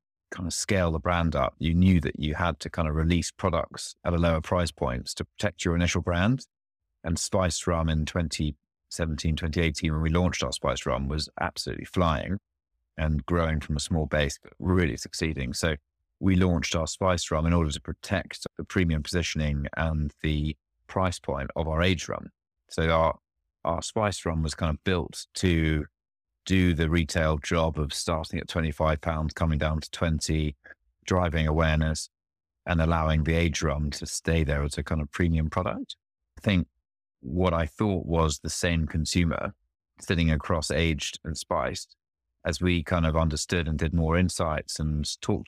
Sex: male